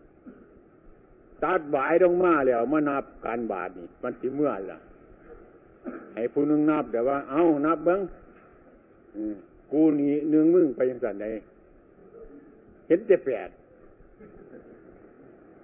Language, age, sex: Thai, 60-79, male